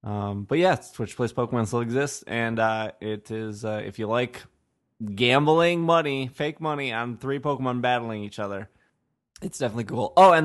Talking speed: 180 wpm